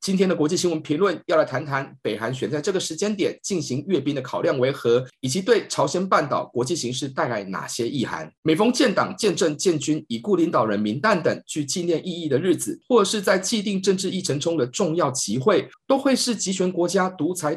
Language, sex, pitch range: Chinese, male, 150-205 Hz